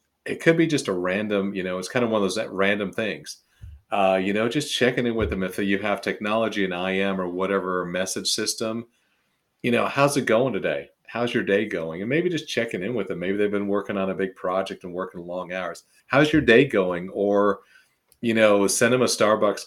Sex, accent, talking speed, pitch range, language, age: male, American, 225 wpm, 95-115 Hz, English, 40-59